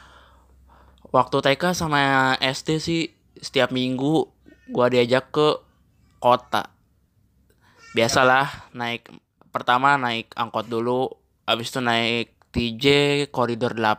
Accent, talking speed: native, 95 wpm